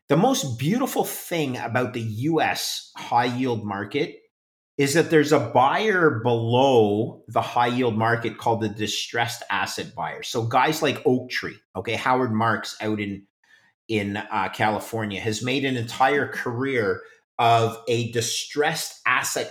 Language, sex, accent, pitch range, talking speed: English, male, American, 110-140 Hz, 135 wpm